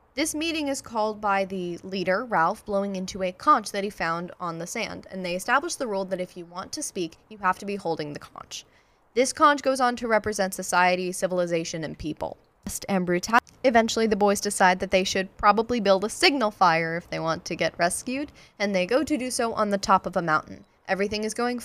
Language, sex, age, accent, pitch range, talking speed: English, female, 10-29, American, 185-235 Hz, 220 wpm